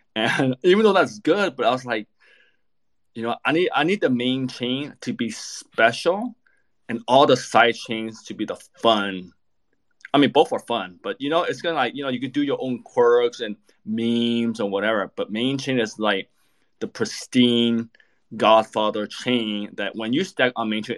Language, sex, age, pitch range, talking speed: English, male, 20-39, 105-125 Hz, 200 wpm